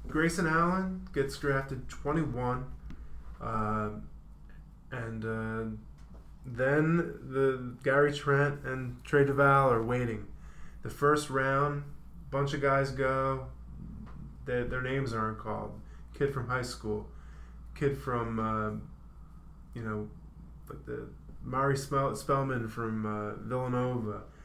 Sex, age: male, 20-39